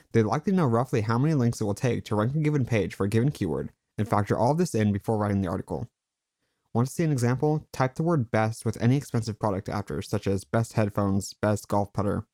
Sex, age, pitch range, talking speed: male, 20-39, 105-140 Hz, 245 wpm